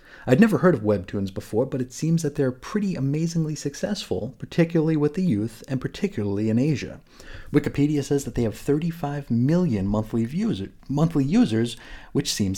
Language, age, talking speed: English, 30-49, 160 wpm